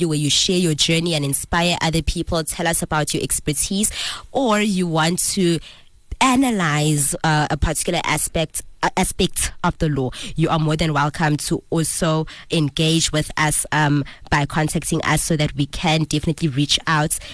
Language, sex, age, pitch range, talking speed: English, female, 20-39, 155-185 Hz, 165 wpm